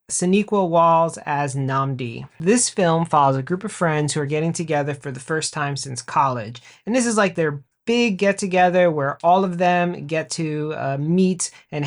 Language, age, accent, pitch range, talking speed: English, 30-49, American, 145-185 Hz, 190 wpm